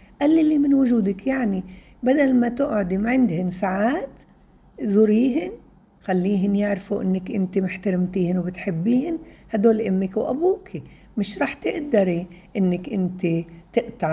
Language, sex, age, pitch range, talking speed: Arabic, female, 60-79, 175-230 Hz, 105 wpm